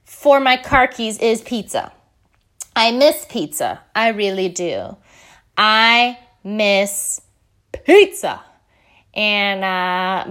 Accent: American